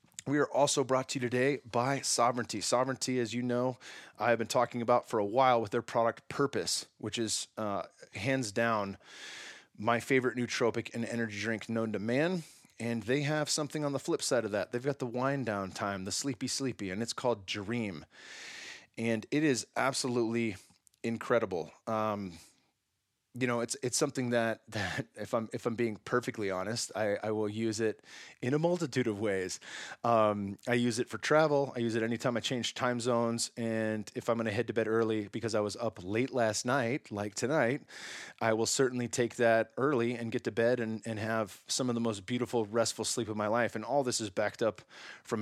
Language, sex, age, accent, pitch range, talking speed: English, male, 20-39, American, 110-125 Hz, 200 wpm